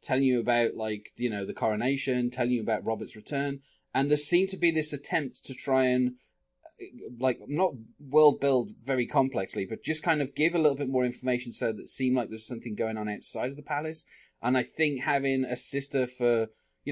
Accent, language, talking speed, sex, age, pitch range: British, English, 215 wpm, male, 20-39, 105-130 Hz